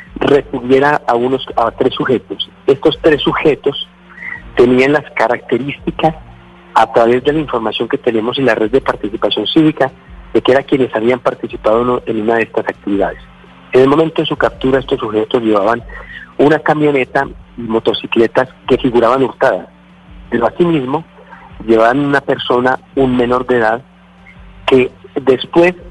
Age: 40-59